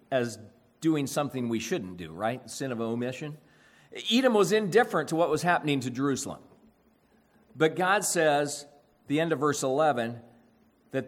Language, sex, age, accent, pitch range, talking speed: English, male, 40-59, American, 120-160 Hz, 150 wpm